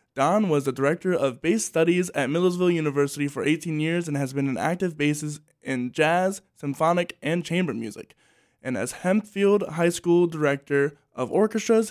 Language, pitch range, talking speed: English, 145-185 Hz, 165 wpm